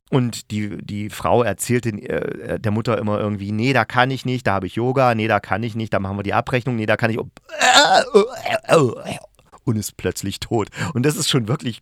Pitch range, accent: 95-120 Hz, German